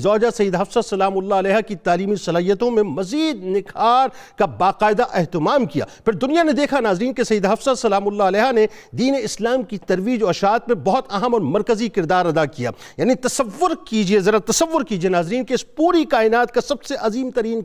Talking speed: 195 wpm